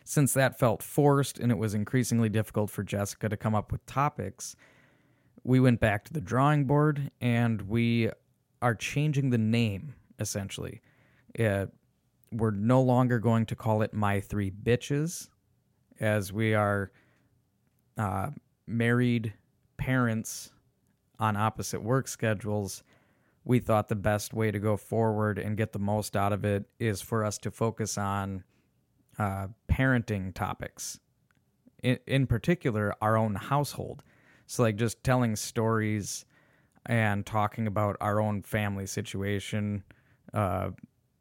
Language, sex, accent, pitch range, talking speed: English, male, American, 105-125 Hz, 135 wpm